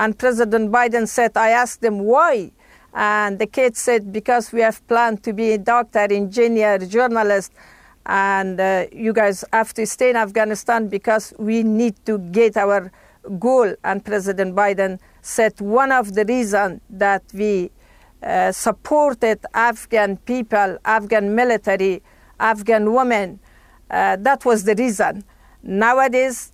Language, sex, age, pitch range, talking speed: English, female, 50-69, 205-235 Hz, 140 wpm